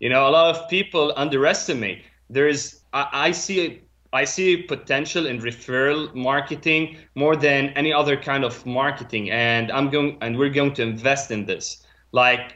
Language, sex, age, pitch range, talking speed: English, male, 20-39, 125-155 Hz, 165 wpm